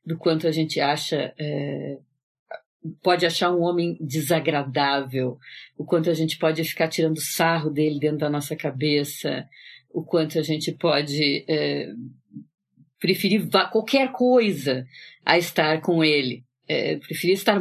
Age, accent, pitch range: 40-59, Brazilian, 155-215 Hz